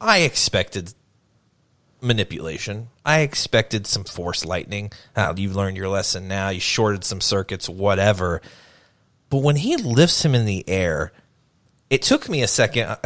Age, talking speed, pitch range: 30-49, 145 wpm, 100-135 Hz